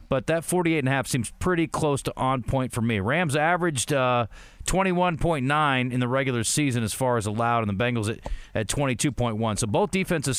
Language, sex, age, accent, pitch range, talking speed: English, male, 40-59, American, 110-145 Hz, 185 wpm